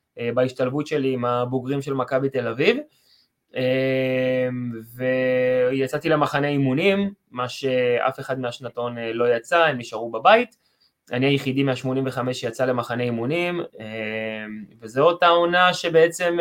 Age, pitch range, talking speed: 20-39, 125-155 Hz, 115 wpm